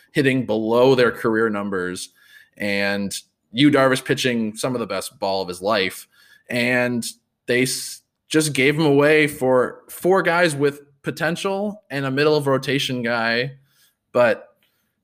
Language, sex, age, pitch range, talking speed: English, male, 20-39, 110-140 Hz, 145 wpm